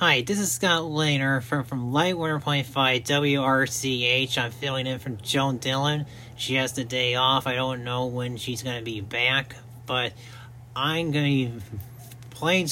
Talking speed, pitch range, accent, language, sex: 165 wpm, 120-140 Hz, American, English, male